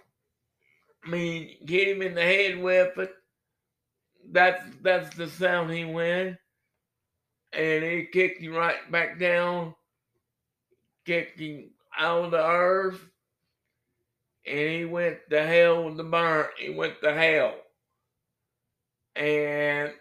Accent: American